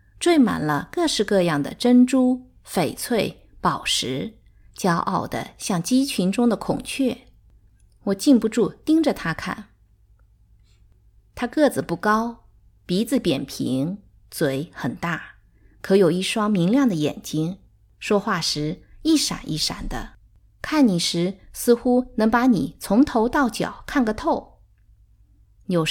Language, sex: Chinese, female